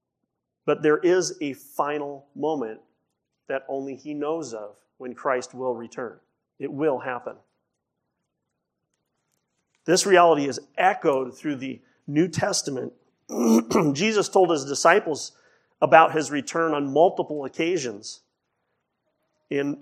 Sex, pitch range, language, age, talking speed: male, 145-185 Hz, English, 40-59, 110 wpm